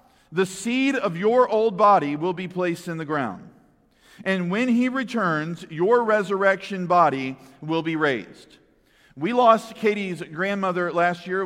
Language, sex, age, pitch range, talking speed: English, male, 40-59, 160-205 Hz, 145 wpm